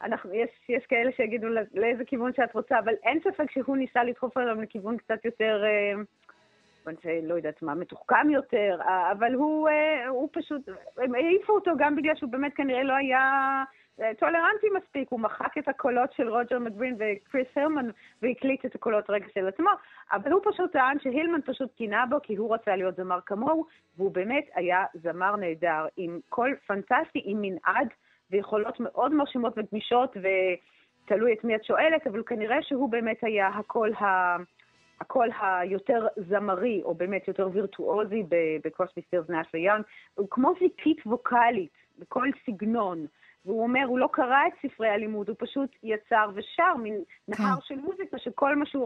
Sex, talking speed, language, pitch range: female, 165 wpm, Hebrew, 205-265 Hz